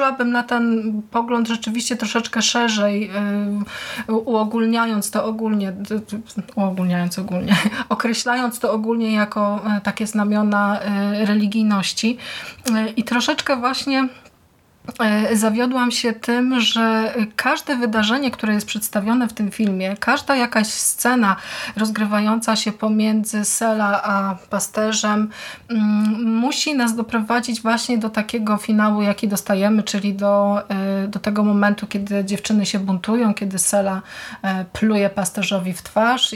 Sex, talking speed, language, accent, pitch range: female, 110 wpm, Polish, native, 205-230 Hz